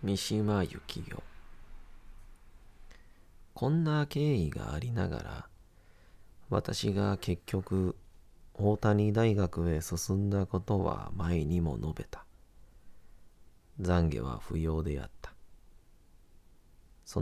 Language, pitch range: Japanese, 85-100 Hz